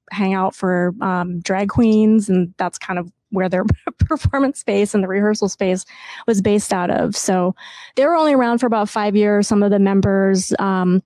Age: 20-39